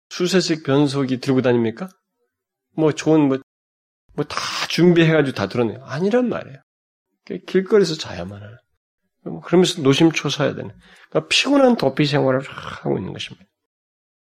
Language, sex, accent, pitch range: Korean, male, native, 95-140 Hz